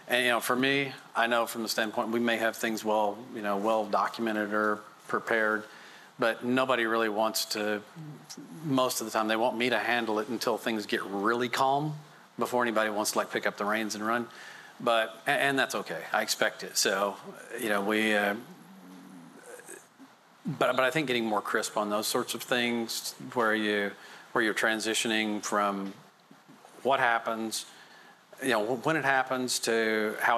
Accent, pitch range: American, 105-115 Hz